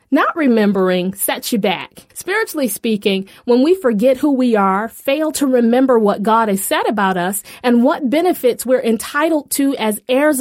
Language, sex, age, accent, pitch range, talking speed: English, female, 30-49, American, 225-280 Hz, 175 wpm